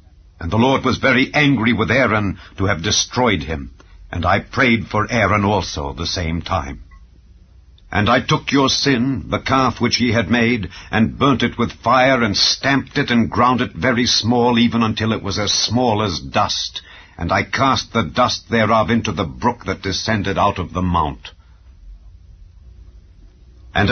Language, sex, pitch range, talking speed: English, male, 95-120 Hz, 175 wpm